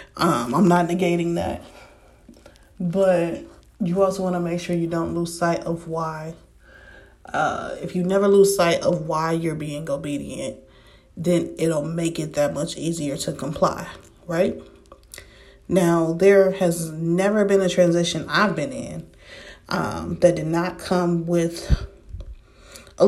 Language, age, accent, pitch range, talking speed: English, 30-49, American, 165-185 Hz, 145 wpm